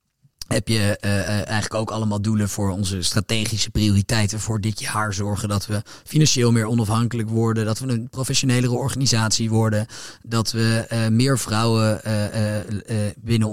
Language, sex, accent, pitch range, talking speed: Dutch, male, Dutch, 105-125 Hz, 165 wpm